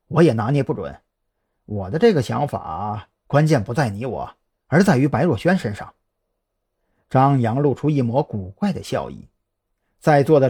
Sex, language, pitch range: male, Chinese, 115-160 Hz